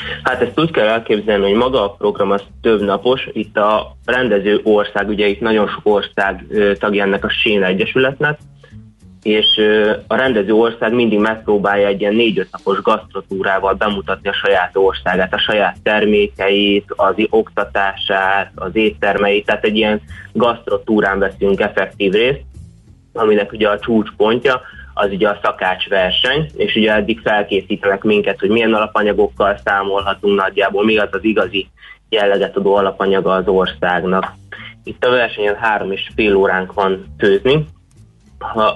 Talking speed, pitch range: 140 wpm, 100-110 Hz